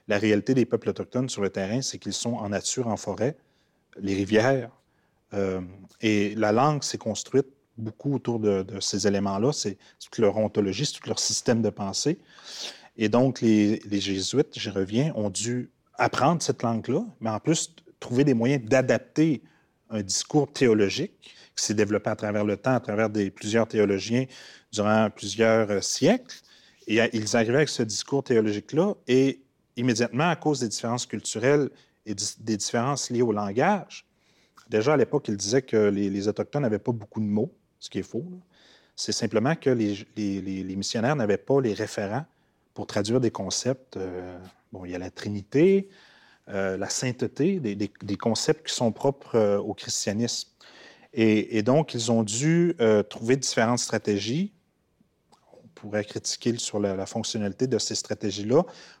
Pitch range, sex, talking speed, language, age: 105-130 Hz, male, 170 wpm, French, 30-49